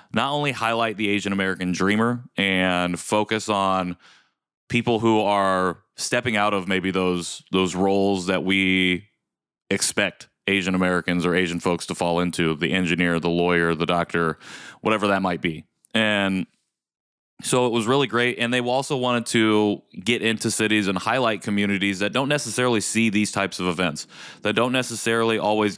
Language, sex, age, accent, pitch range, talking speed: English, male, 20-39, American, 95-110 Hz, 165 wpm